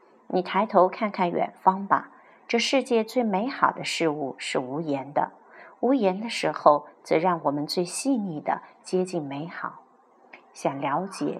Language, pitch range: Chinese, 165-225 Hz